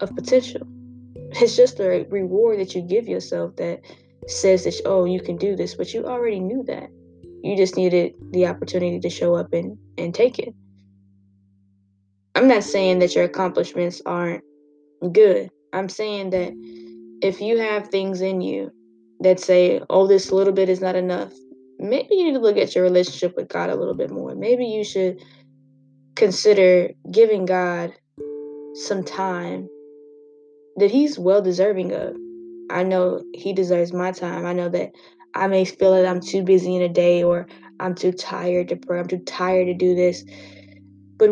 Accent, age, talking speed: American, 10-29, 175 wpm